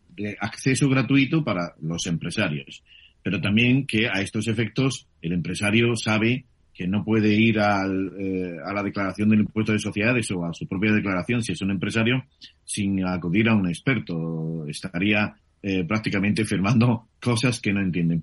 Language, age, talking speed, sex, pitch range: Spanish, 40-59, 165 wpm, male, 95-125 Hz